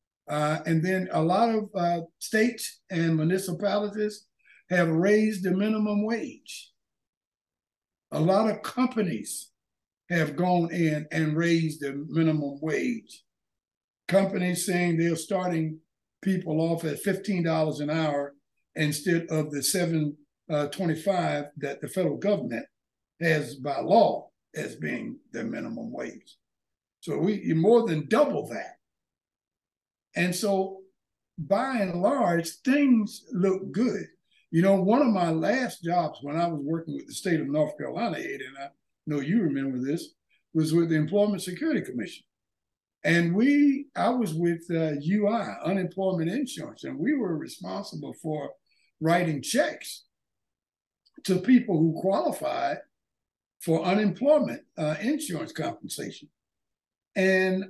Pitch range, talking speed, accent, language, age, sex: 160-205 Hz, 130 wpm, American, English, 60-79, male